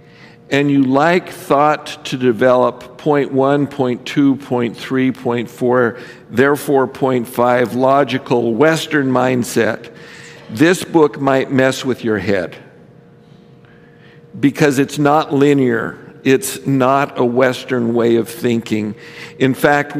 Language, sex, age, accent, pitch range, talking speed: English, male, 50-69, American, 125-155 Hz, 120 wpm